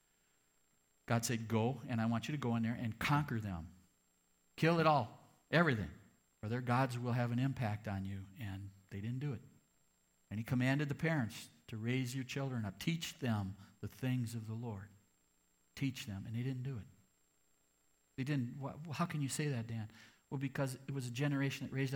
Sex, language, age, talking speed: male, English, 50-69, 200 wpm